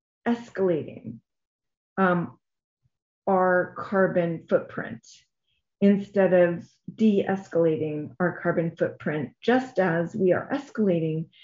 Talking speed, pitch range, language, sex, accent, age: 85 wpm, 175-225 Hz, English, female, American, 40-59